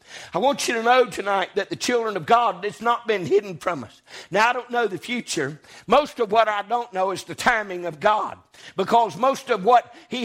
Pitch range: 235-295 Hz